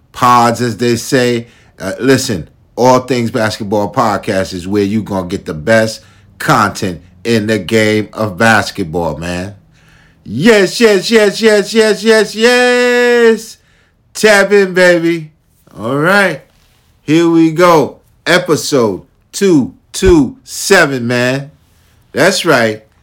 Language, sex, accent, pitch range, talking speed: English, male, American, 105-155 Hz, 115 wpm